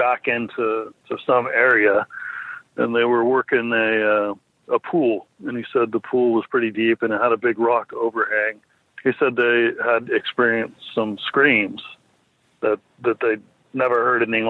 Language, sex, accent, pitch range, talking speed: English, male, American, 110-125 Hz, 170 wpm